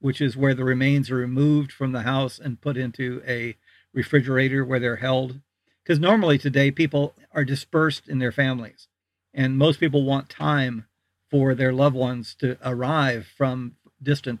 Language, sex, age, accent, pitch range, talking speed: English, male, 50-69, American, 120-140 Hz, 165 wpm